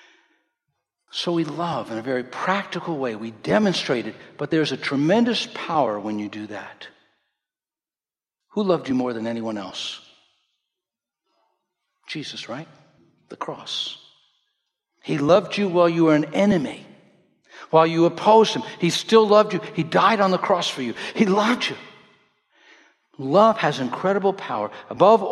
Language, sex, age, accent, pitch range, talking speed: English, male, 60-79, American, 135-215 Hz, 145 wpm